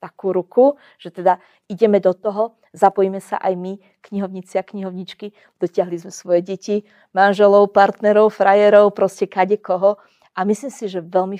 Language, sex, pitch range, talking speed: Slovak, female, 190-215 Hz, 145 wpm